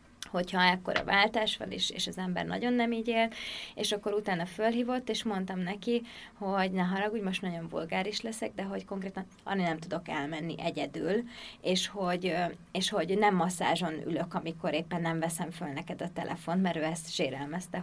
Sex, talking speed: female, 180 wpm